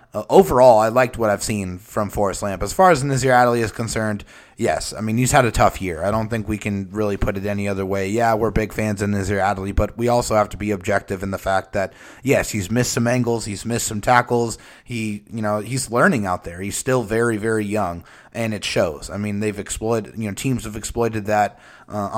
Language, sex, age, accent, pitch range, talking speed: English, male, 30-49, American, 100-120 Hz, 240 wpm